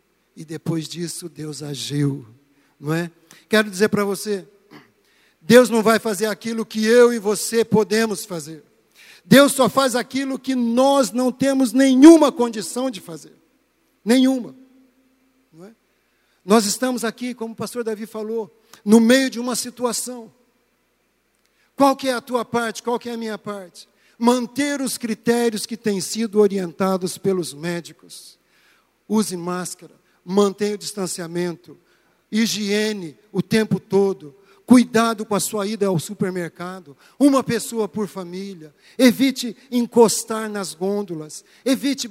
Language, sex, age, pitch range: Portuguese, male, 60-79, 200-260 Hz